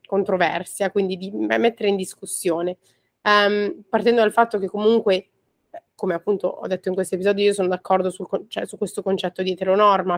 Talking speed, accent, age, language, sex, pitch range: 155 wpm, native, 20-39, Italian, female, 180-210 Hz